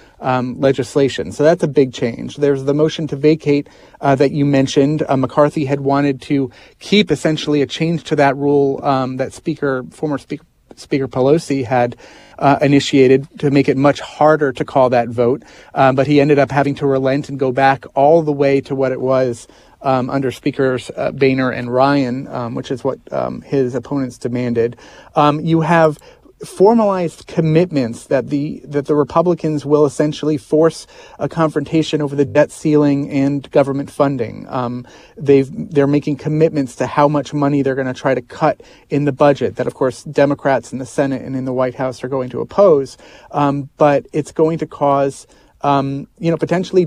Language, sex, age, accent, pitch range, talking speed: English, male, 30-49, American, 135-150 Hz, 185 wpm